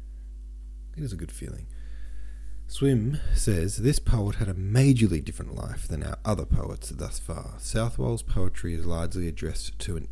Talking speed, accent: 160 wpm, Australian